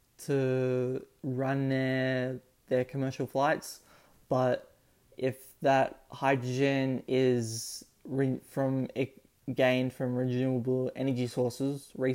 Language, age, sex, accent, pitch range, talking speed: English, 20-39, male, Australian, 130-145 Hz, 95 wpm